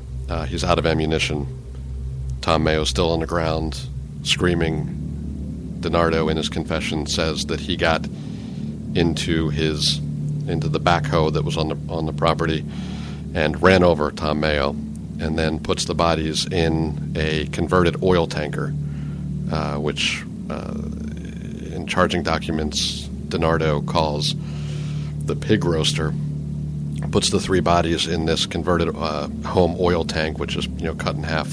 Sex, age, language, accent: male, 50-69, English, American